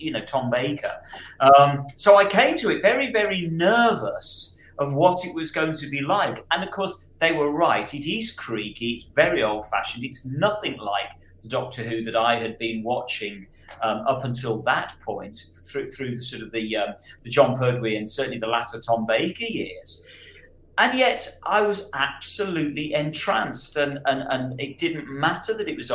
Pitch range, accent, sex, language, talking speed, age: 115-165 Hz, British, male, English, 185 wpm, 40-59